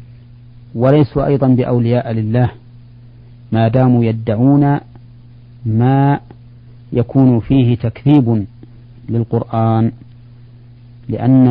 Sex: male